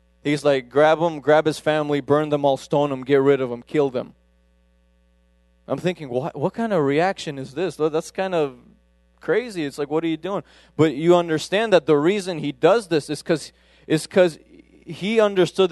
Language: English